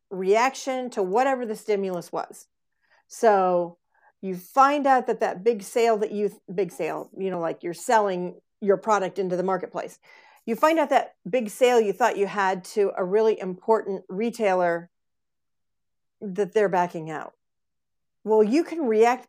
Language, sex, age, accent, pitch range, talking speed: English, female, 50-69, American, 185-240 Hz, 160 wpm